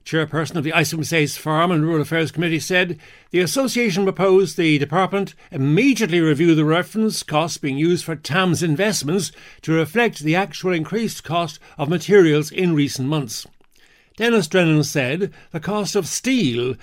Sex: male